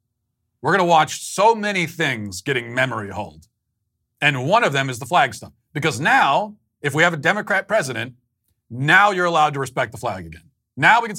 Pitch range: 115-145 Hz